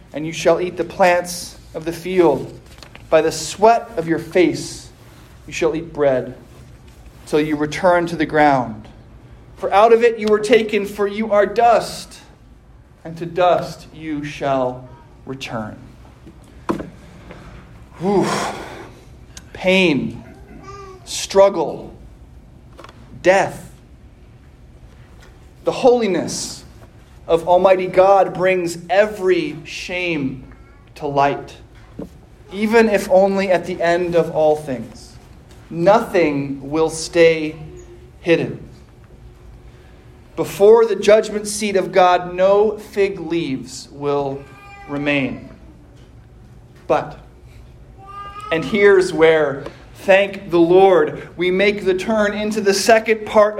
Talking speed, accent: 105 wpm, American